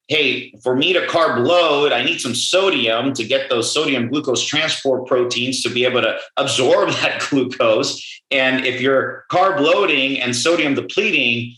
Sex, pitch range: male, 120-150 Hz